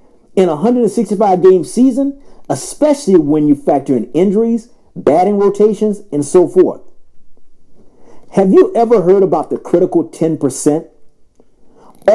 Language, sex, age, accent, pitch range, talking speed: English, male, 50-69, American, 165-235 Hz, 115 wpm